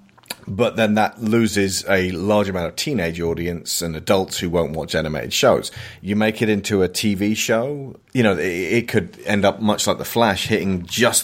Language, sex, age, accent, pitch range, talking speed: English, male, 30-49, British, 95-115 Hz, 200 wpm